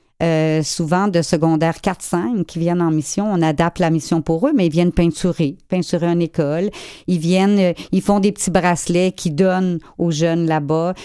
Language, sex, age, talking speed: French, female, 50-69, 190 wpm